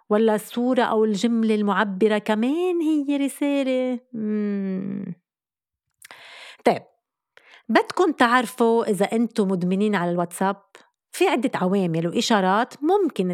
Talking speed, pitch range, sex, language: 100 wpm, 195-265 Hz, female, Arabic